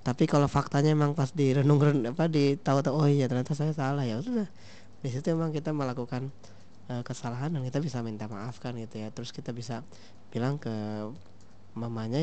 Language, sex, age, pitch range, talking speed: Indonesian, male, 20-39, 110-140 Hz, 160 wpm